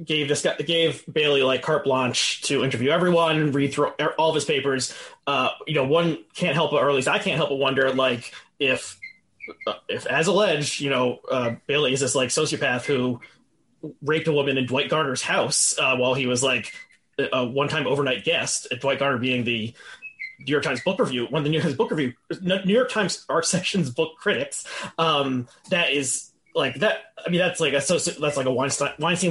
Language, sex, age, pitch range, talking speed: English, male, 20-39, 135-165 Hz, 210 wpm